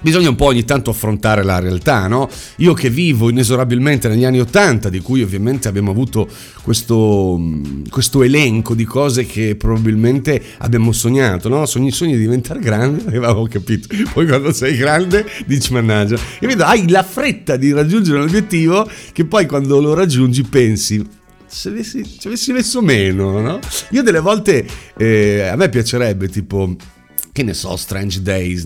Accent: native